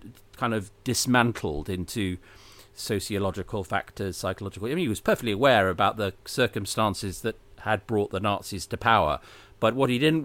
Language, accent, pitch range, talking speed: English, British, 100-120 Hz, 160 wpm